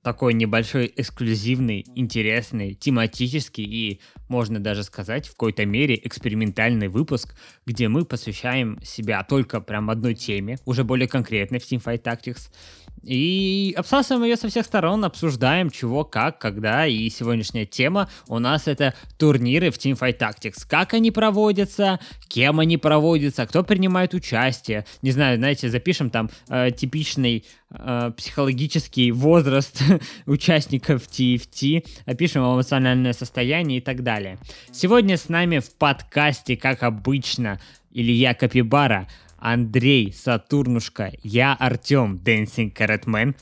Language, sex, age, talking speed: Russian, male, 20-39, 125 wpm